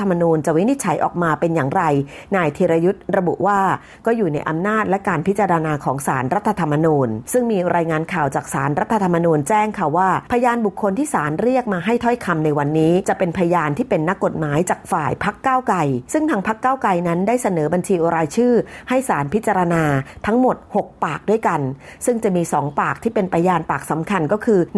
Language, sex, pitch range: Thai, female, 160-210 Hz